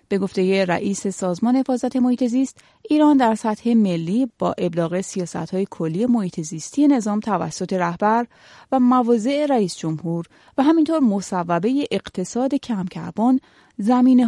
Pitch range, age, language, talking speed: 175-240 Hz, 30-49, Persian, 125 wpm